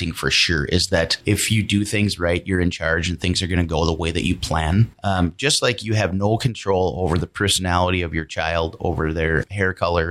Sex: male